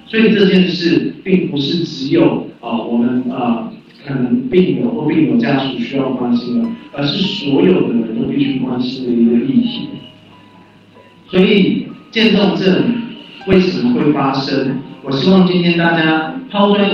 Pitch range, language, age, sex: 135-200 Hz, Chinese, 50-69, male